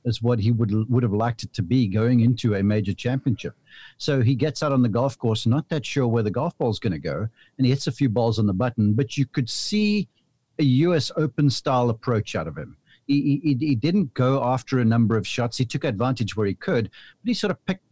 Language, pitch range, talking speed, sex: English, 115-145 Hz, 250 wpm, male